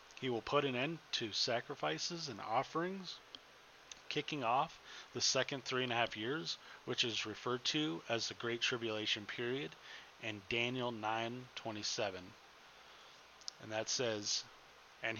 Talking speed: 135 wpm